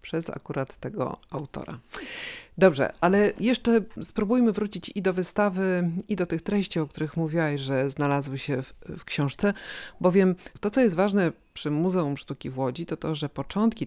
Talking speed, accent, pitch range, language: 165 wpm, native, 145-185 Hz, Polish